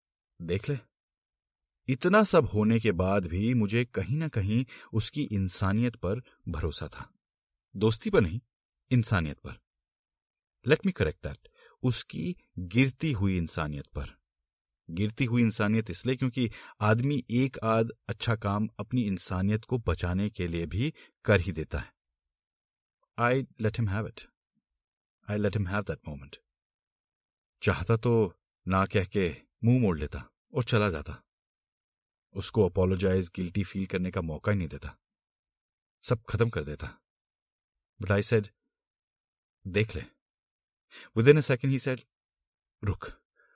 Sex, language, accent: male, Hindi, native